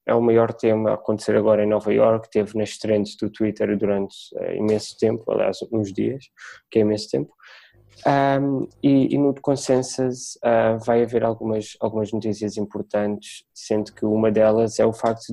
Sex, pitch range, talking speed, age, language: male, 105-120 Hz, 175 wpm, 20-39, Portuguese